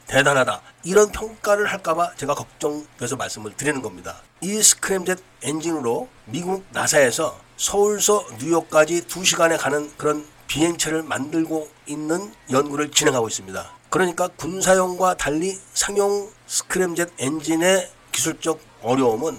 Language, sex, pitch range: Korean, male, 140-185 Hz